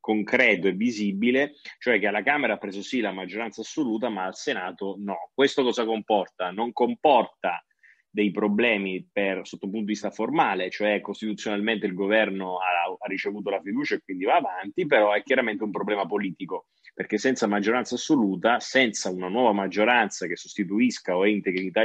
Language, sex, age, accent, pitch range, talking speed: Italian, male, 30-49, native, 95-110 Hz, 175 wpm